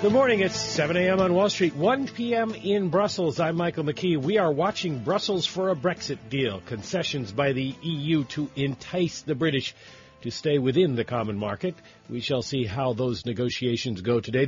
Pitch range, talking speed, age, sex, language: 130-180 Hz, 185 wpm, 50-69, male, English